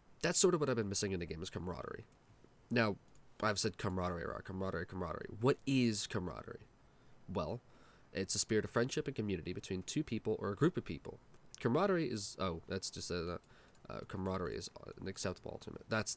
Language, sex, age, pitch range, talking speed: English, male, 20-39, 100-125 Hz, 185 wpm